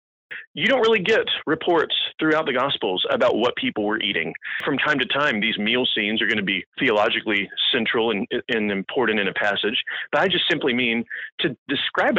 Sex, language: male, English